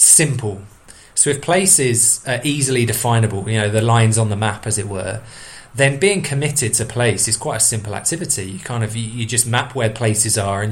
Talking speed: 205 wpm